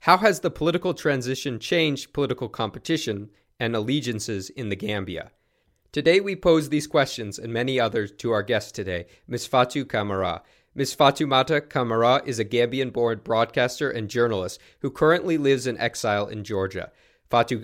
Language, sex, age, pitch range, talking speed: English, male, 40-59, 115-150 Hz, 160 wpm